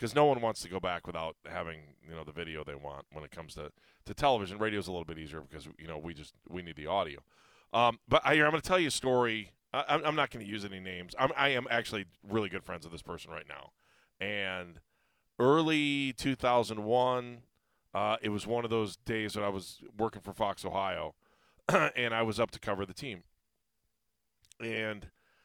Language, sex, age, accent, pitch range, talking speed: English, male, 30-49, American, 90-120 Hz, 215 wpm